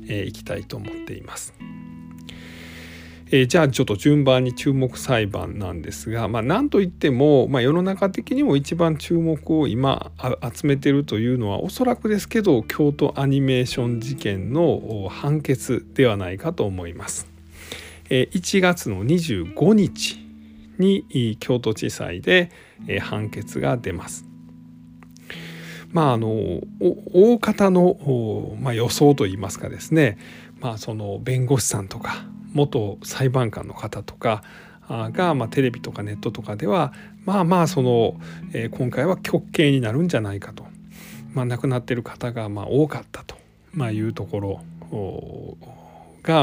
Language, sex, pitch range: Japanese, male, 100-145 Hz